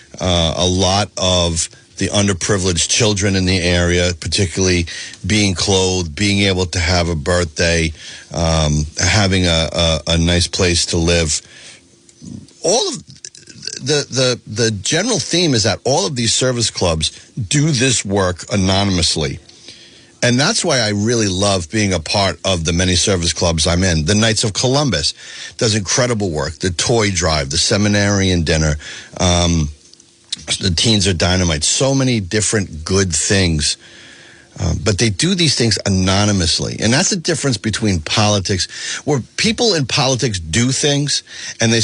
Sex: male